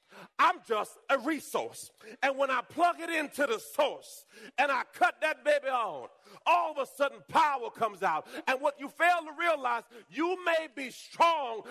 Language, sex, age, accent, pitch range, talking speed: English, male, 40-59, American, 240-345 Hz, 180 wpm